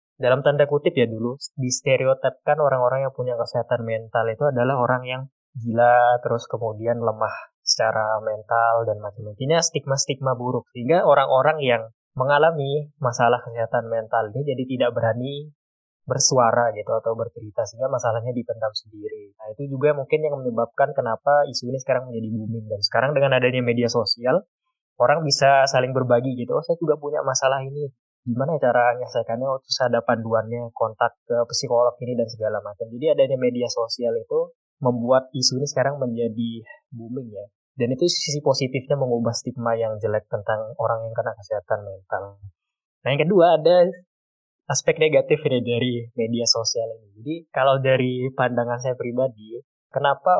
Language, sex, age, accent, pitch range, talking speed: Indonesian, male, 20-39, native, 115-135 Hz, 155 wpm